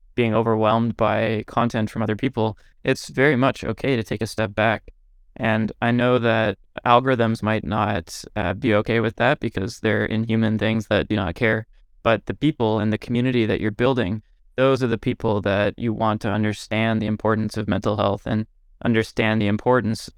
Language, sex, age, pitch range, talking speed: English, male, 20-39, 105-120 Hz, 185 wpm